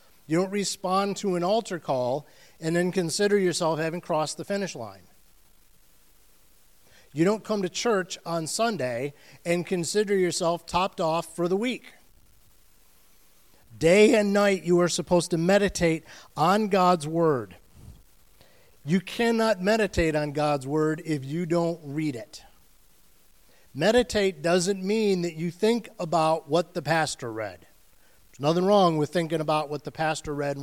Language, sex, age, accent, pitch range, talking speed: English, male, 50-69, American, 155-195 Hz, 145 wpm